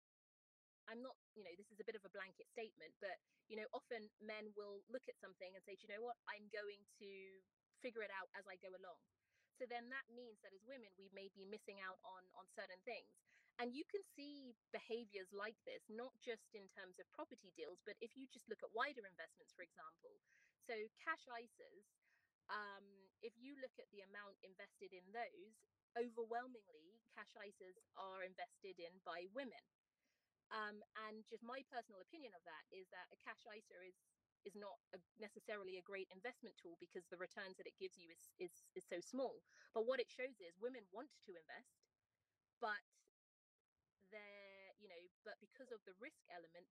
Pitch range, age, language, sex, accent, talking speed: 195-245 Hz, 30-49, English, female, British, 195 wpm